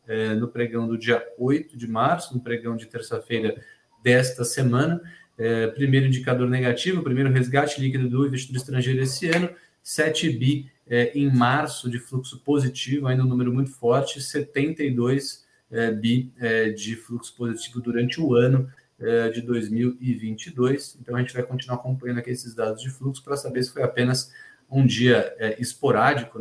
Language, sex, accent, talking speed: Portuguese, male, Brazilian, 150 wpm